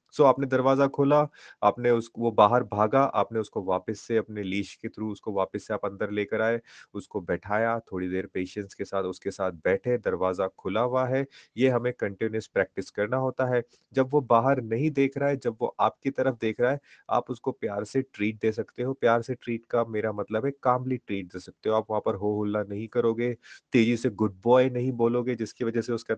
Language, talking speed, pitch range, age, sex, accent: Hindi, 220 wpm, 105-125 Hz, 30-49, male, native